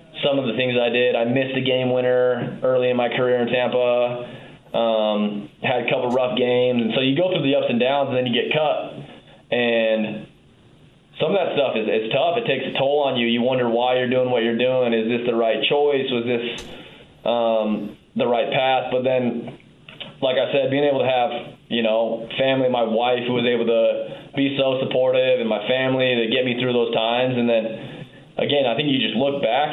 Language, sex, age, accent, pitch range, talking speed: English, male, 20-39, American, 115-130 Hz, 220 wpm